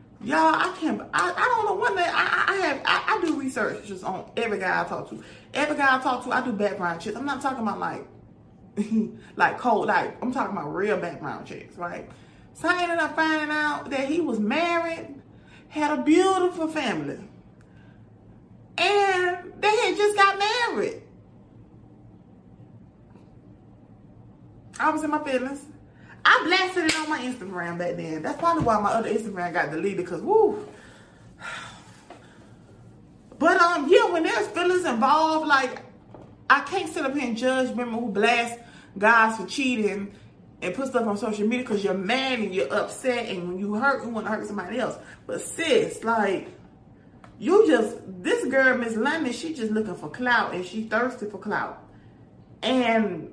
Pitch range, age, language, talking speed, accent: 215-335 Hz, 20-39, English, 170 wpm, American